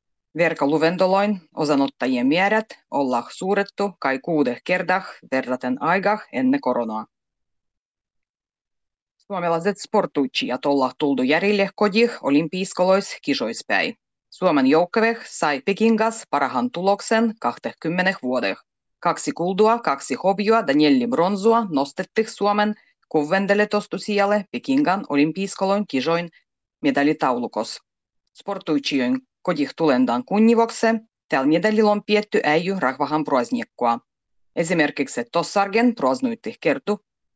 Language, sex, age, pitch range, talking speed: Finnish, female, 30-49, 145-220 Hz, 90 wpm